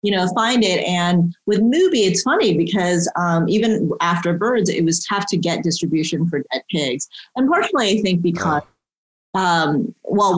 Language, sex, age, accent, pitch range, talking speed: English, female, 30-49, American, 155-185 Hz, 175 wpm